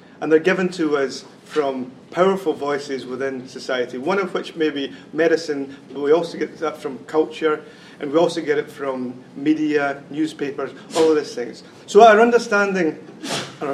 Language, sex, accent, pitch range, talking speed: English, male, British, 135-170 Hz, 170 wpm